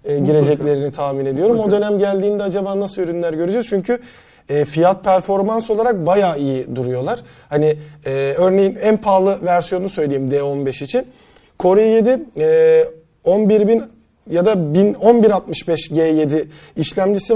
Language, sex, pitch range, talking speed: Turkish, male, 155-210 Hz, 130 wpm